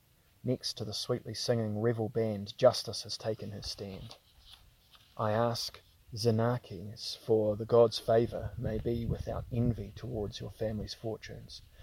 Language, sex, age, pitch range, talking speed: English, male, 30-49, 100-115 Hz, 135 wpm